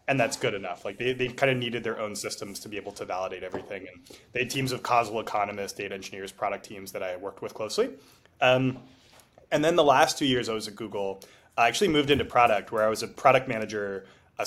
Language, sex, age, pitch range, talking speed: English, male, 20-39, 105-135 Hz, 235 wpm